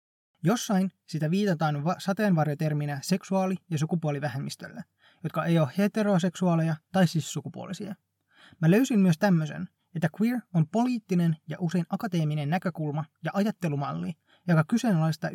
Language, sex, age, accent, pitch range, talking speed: Finnish, male, 20-39, native, 150-185 Hz, 120 wpm